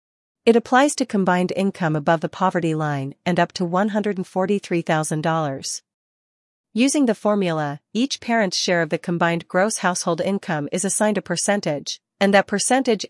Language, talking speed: English, 145 wpm